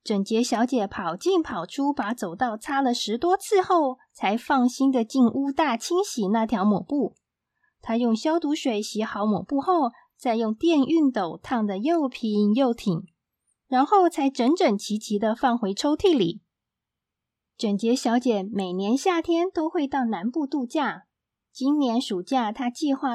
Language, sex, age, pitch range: Chinese, female, 20-39, 215-300 Hz